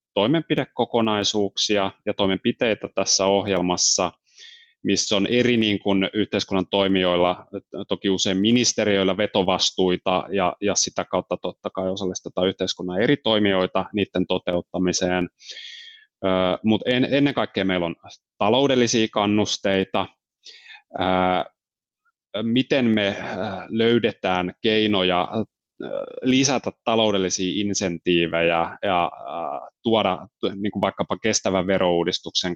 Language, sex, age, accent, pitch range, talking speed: Finnish, male, 30-49, native, 90-115 Hz, 85 wpm